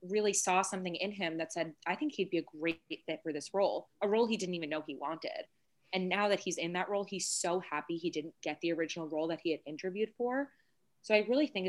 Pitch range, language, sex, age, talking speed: 165-200 Hz, English, female, 20-39, 255 wpm